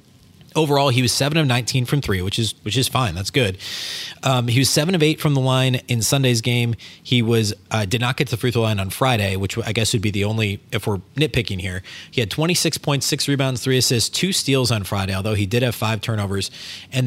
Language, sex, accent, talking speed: English, male, American, 245 wpm